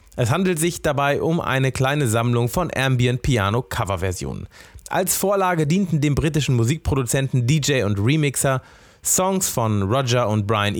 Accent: German